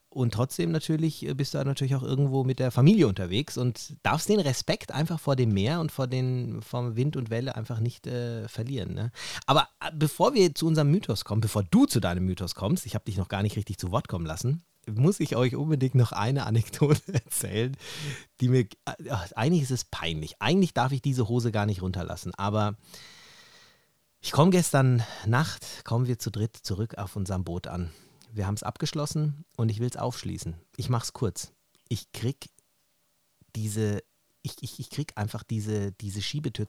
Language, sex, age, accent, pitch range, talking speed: German, male, 30-49, German, 100-135 Hz, 195 wpm